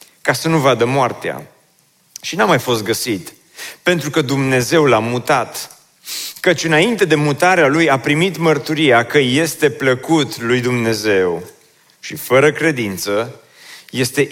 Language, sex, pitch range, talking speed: Romanian, male, 130-165 Hz, 135 wpm